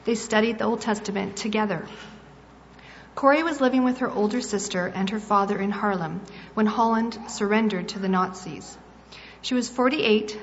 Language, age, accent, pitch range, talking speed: English, 40-59, American, 195-240 Hz, 155 wpm